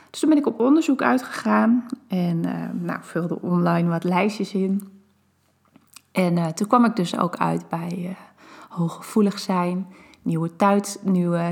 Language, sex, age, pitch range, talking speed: Dutch, female, 20-39, 175-225 Hz, 155 wpm